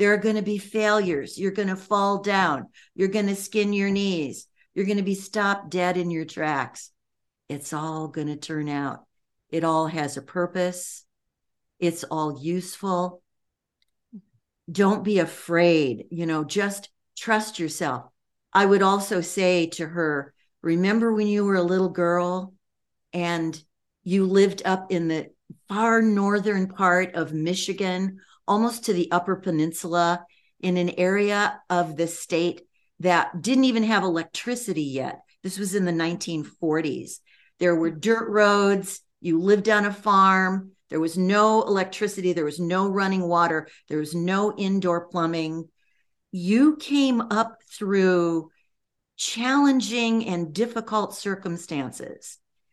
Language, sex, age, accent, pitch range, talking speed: English, female, 50-69, American, 170-205 Hz, 140 wpm